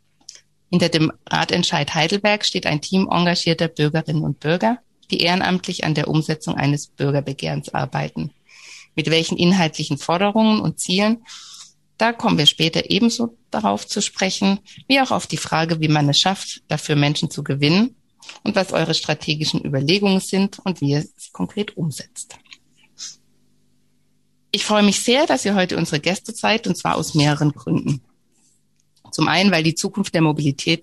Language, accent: German, German